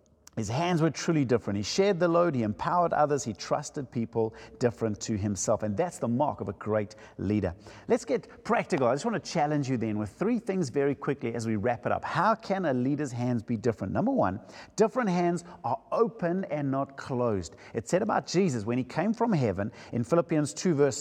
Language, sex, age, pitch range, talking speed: English, male, 50-69, 120-170 Hz, 215 wpm